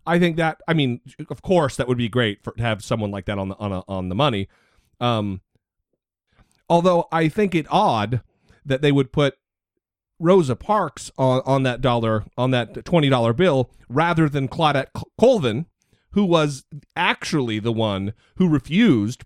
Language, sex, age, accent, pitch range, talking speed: English, male, 40-59, American, 110-150 Hz, 175 wpm